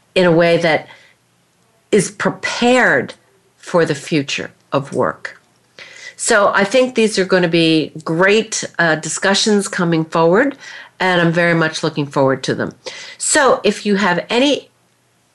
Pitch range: 155-200 Hz